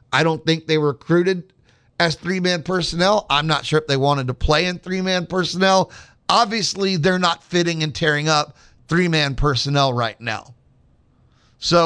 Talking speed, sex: 160 wpm, male